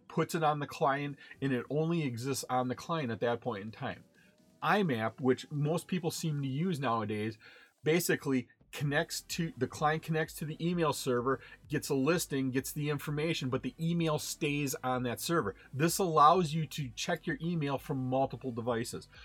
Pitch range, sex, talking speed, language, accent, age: 125-155 Hz, male, 180 wpm, English, American, 40-59